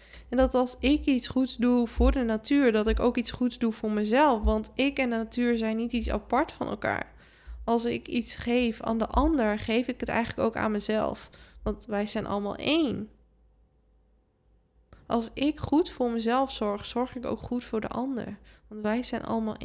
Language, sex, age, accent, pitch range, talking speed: Dutch, female, 10-29, Dutch, 215-245 Hz, 200 wpm